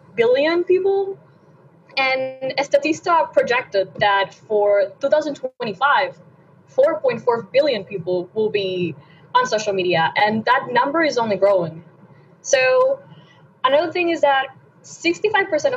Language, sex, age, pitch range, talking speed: English, female, 20-39, 195-280 Hz, 105 wpm